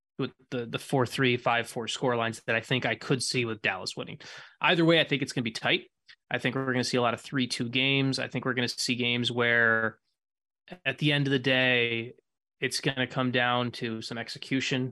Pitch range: 120-140 Hz